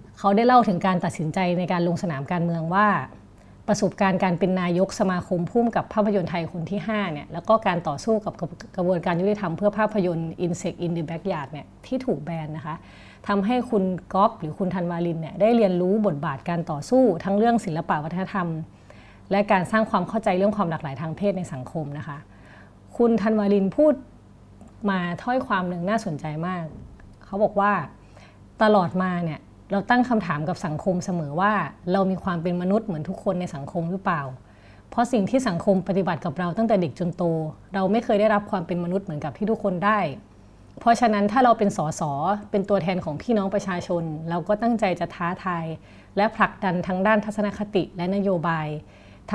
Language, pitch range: Thai, 165-205 Hz